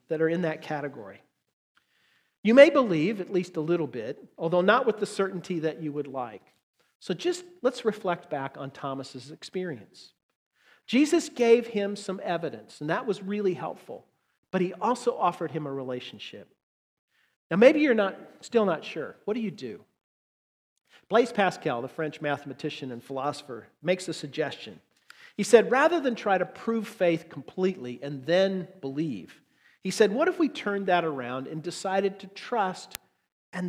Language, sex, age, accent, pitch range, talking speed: English, male, 50-69, American, 155-215 Hz, 165 wpm